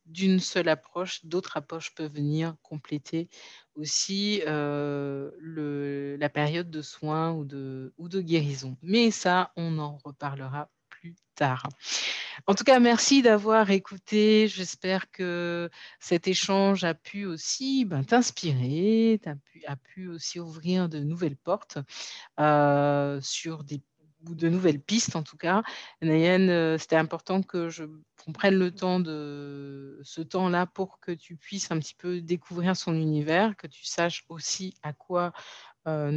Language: French